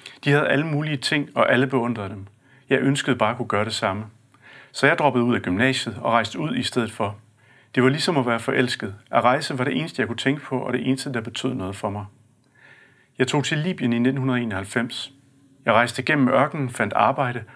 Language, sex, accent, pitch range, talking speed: Danish, male, native, 115-135 Hz, 220 wpm